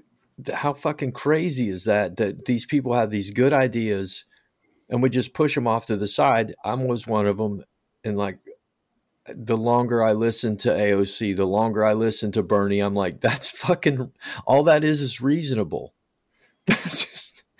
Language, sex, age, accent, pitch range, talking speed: English, male, 50-69, American, 105-130 Hz, 175 wpm